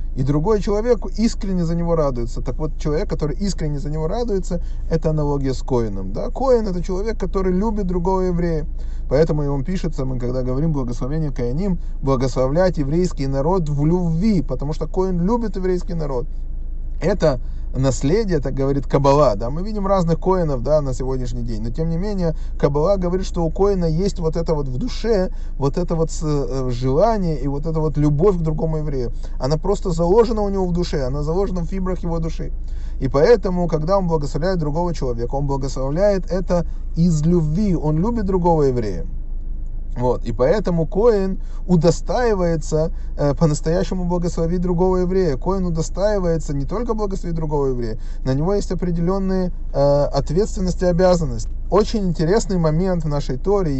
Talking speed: 165 wpm